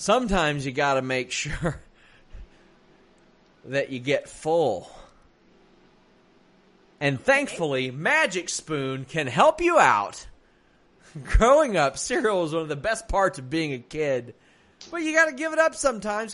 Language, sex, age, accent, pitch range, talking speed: English, male, 30-49, American, 135-200 Hz, 135 wpm